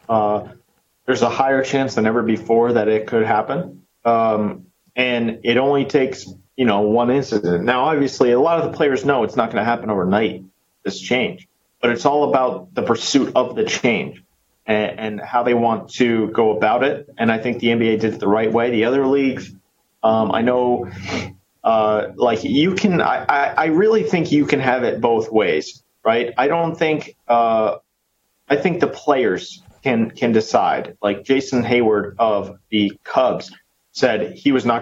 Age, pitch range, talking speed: 40-59, 110-130 Hz, 185 wpm